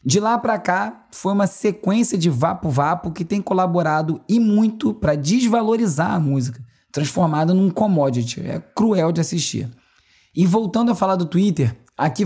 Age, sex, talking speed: 20-39, male, 160 wpm